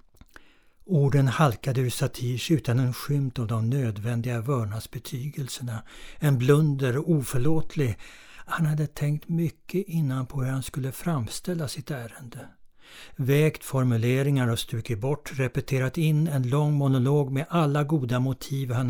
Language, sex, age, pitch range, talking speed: Swedish, male, 60-79, 120-150 Hz, 130 wpm